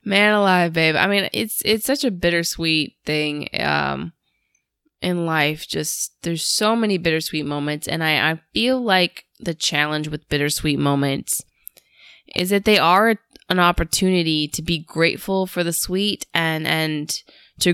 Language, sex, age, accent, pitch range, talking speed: English, female, 20-39, American, 170-215 Hz, 150 wpm